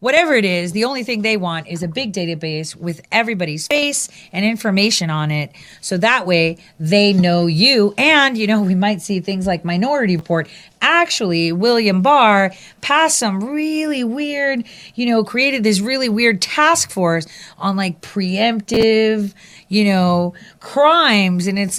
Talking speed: 160 wpm